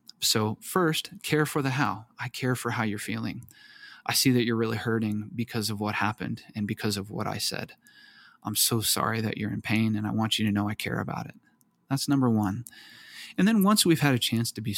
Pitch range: 110-130 Hz